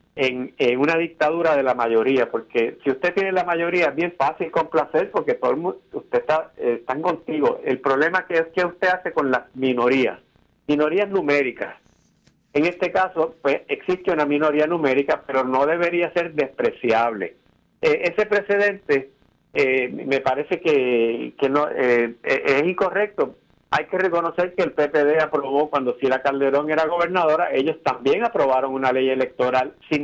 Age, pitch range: 50-69, 135-185 Hz